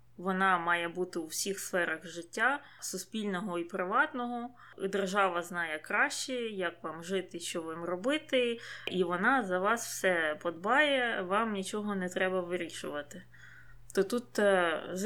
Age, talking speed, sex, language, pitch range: 20-39, 130 wpm, female, Ukrainian, 180-240 Hz